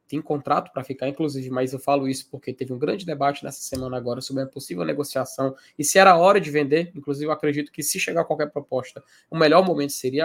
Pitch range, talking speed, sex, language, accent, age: 145-210 Hz, 235 wpm, male, Portuguese, Brazilian, 20-39